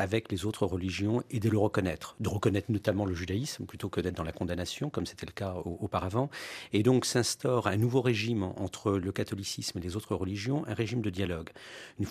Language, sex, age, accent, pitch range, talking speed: French, male, 50-69, French, 100-120 Hz, 210 wpm